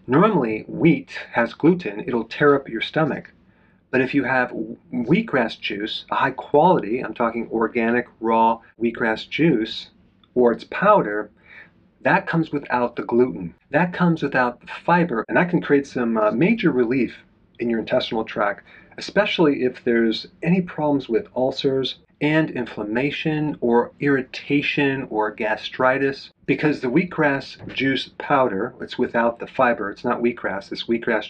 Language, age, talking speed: English, 40-59, 145 wpm